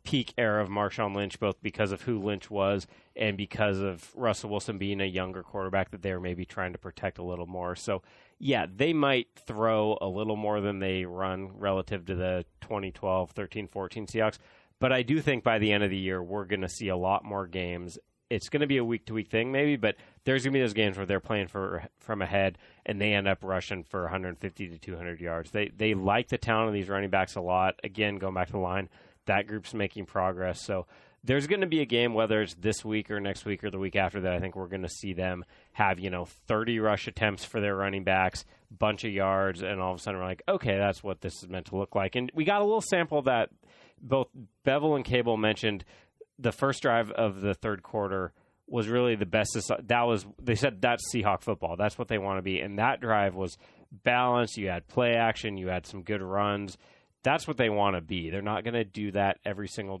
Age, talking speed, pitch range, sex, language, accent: 30-49, 230 wpm, 95-110 Hz, male, English, American